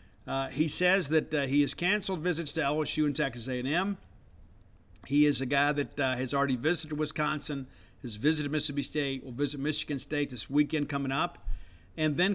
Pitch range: 130-155 Hz